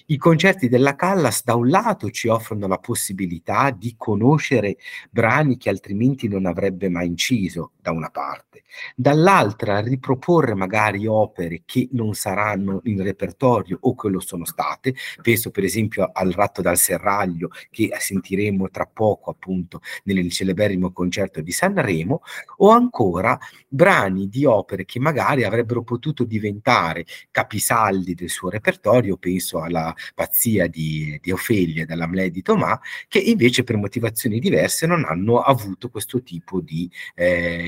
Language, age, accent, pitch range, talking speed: Italian, 50-69, native, 95-125 Hz, 145 wpm